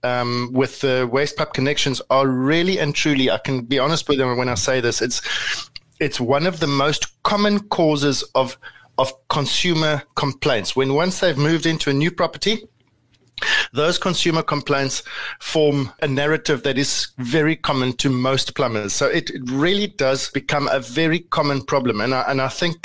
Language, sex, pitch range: English, male, 130-155 Hz